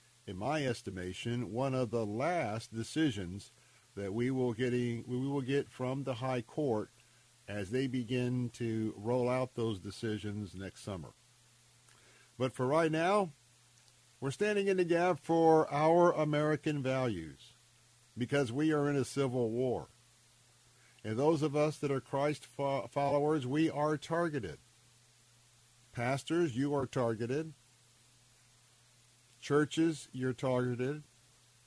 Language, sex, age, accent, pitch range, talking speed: English, male, 50-69, American, 120-140 Hz, 125 wpm